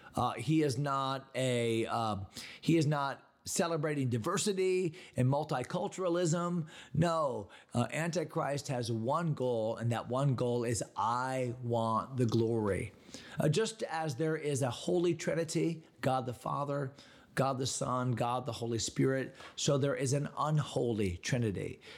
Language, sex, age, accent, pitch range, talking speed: English, male, 40-59, American, 120-165 Hz, 140 wpm